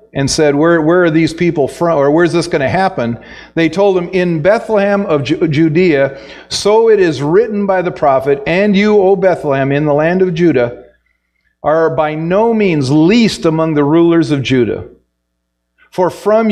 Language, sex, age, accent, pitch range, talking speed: English, male, 50-69, American, 135-180 Hz, 185 wpm